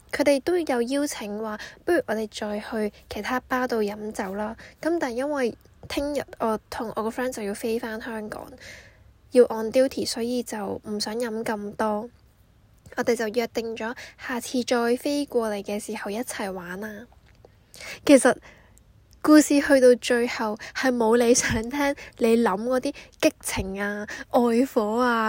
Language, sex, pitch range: Chinese, female, 215-270 Hz